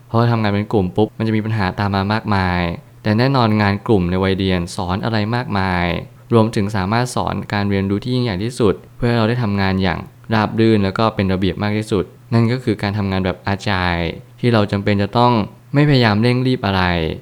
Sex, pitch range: male, 95-115 Hz